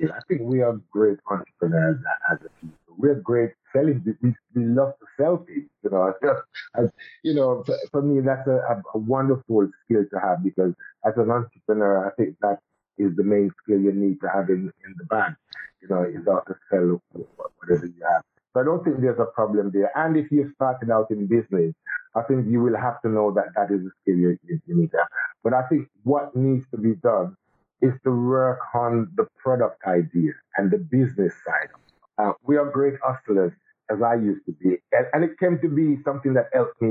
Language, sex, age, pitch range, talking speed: English, male, 50-69, 100-135 Hz, 215 wpm